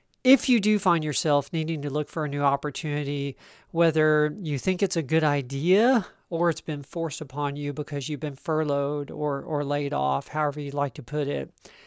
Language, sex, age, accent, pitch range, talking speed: English, male, 40-59, American, 145-180 Hz, 195 wpm